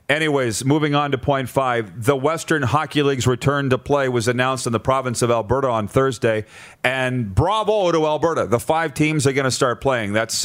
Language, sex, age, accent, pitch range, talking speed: English, male, 40-59, American, 120-150 Hz, 200 wpm